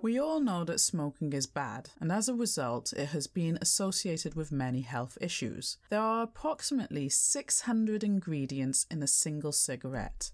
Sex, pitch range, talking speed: female, 145-215 Hz, 165 wpm